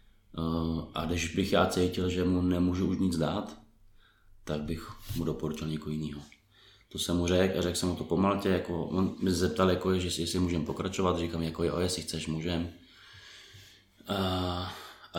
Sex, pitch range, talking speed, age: male, 85-100 Hz, 180 wpm, 20-39